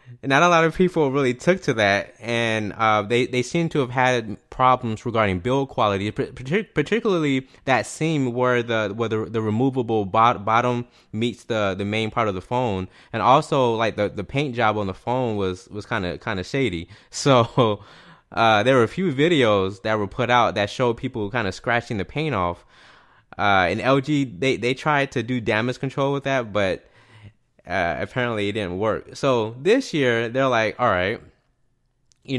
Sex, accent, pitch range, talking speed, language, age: male, American, 110-130 Hz, 190 wpm, English, 20-39